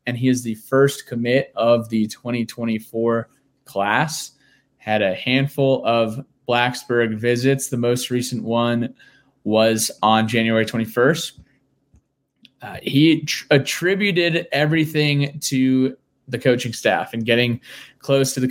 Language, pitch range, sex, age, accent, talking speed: English, 120-140 Hz, male, 20-39, American, 125 wpm